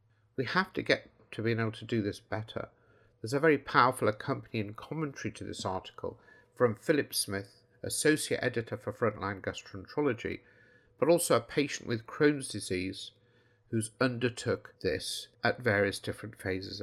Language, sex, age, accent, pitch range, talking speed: English, male, 50-69, British, 110-130 Hz, 150 wpm